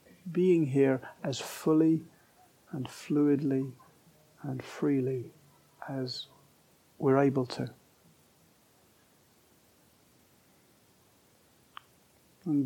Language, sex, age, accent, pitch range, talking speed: English, male, 50-69, British, 130-160 Hz, 60 wpm